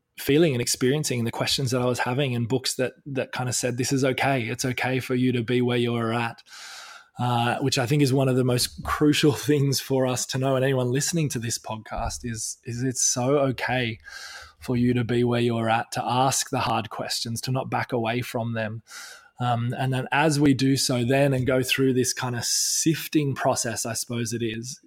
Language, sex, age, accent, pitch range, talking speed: English, male, 20-39, Australian, 120-130 Hz, 220 wpm